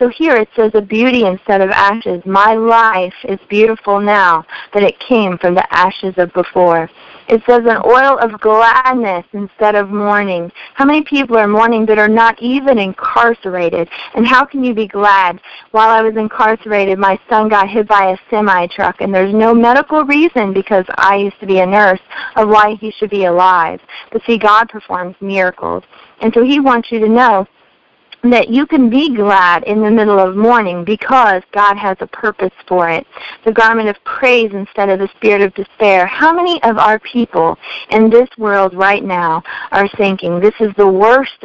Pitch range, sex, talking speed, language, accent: 195-230 Hz, female, 190 wpm, English, American